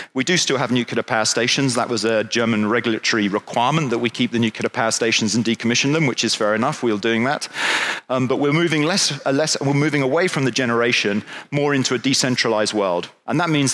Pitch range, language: 115-140 Hz, German